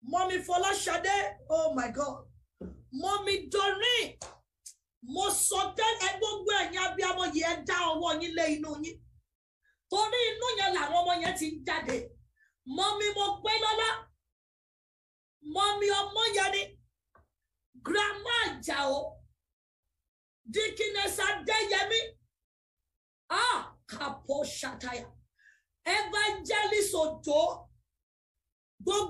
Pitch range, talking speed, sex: 325-435 Hz, 110 wpm, female